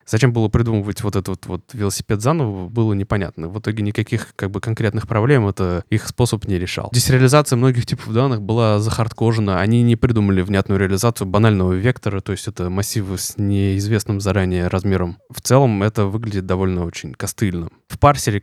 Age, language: 20-39, Russian